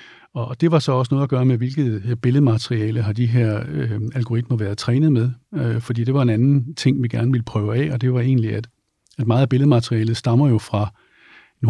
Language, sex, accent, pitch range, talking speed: Danish, male, native, 110-130 Hz, 225 wpm